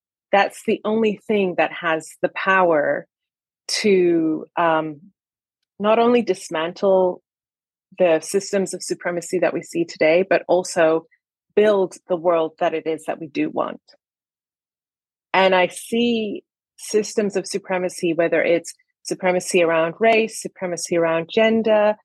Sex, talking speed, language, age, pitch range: female, 130 wpm, English, 30-49, 170-205 Hz